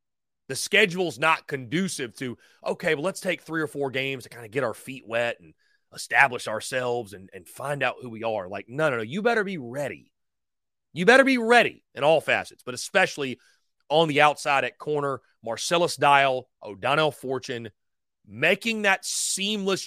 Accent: American